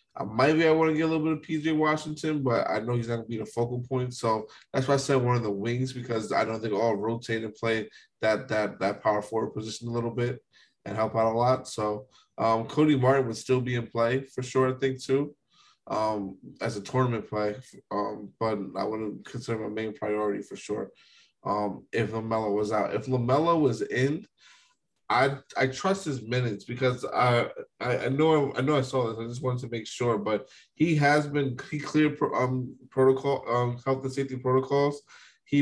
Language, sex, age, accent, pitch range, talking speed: English, male, 20-39, American, 110-135 Hz, 215 wpm